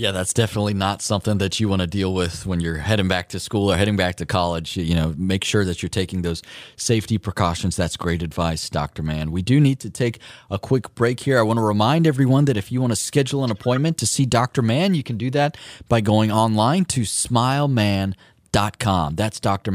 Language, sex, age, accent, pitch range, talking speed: English, male, 30-49, American, 95-130 Hz, 225 wpm